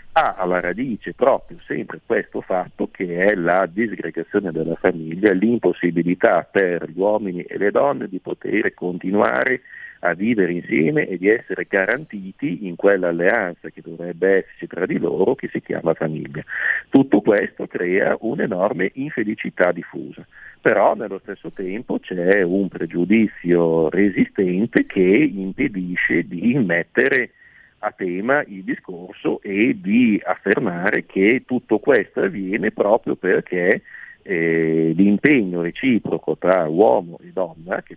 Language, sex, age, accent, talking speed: Italian, male, 50-69, native, 130 wpm